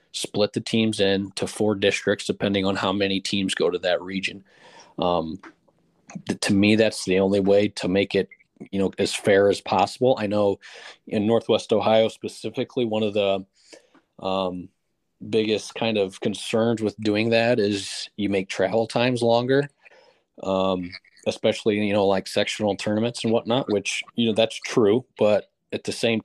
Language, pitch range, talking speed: English, 100-110 Hz, 165 wpm